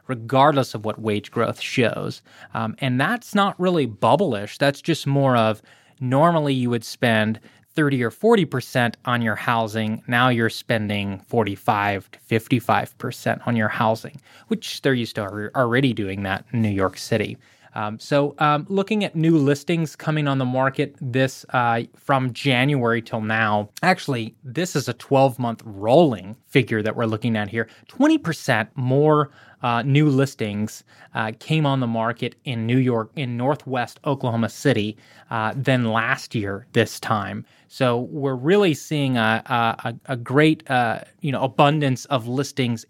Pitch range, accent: 115-145 Hz, American